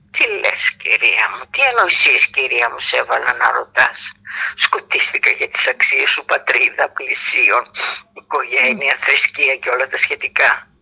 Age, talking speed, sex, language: 50-69, 135 wpm, female, Greek